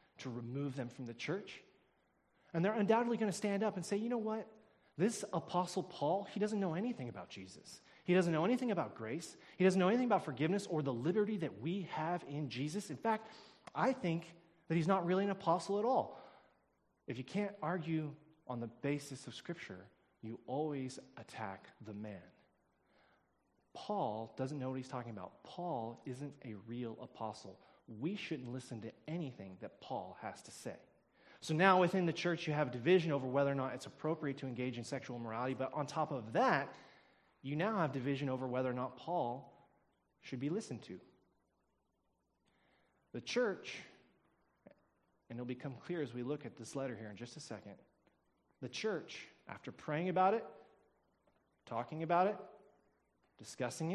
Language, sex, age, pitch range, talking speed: English, male, 30-49, 125-185 Hz, 175 wpm